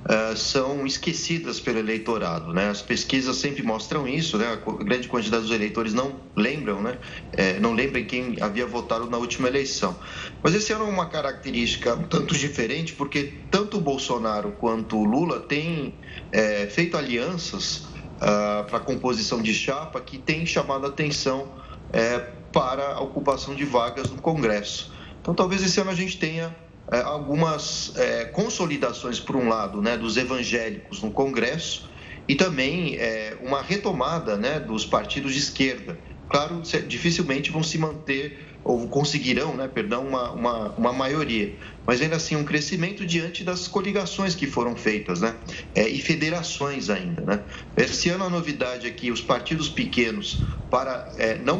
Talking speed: 155 wpm